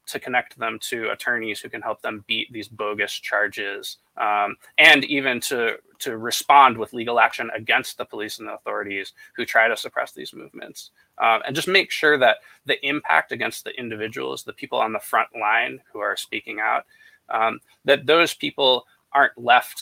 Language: English